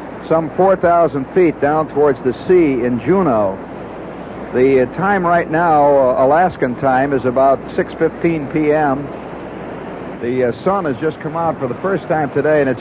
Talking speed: 165 wpm